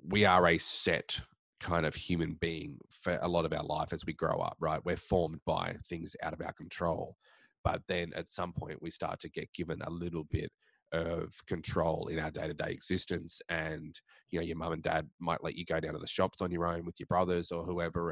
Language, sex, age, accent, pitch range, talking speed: English, male, 20-39, Australian, 80-90 Hz, 230 wpm